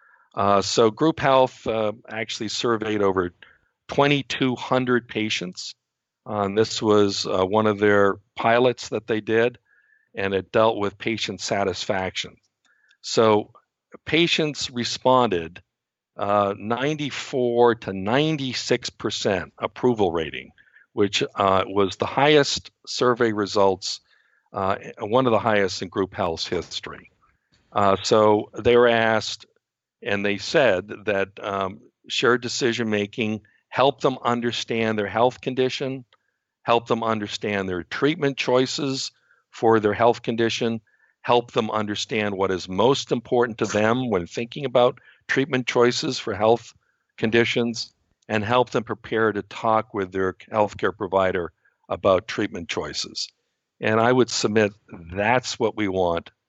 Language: English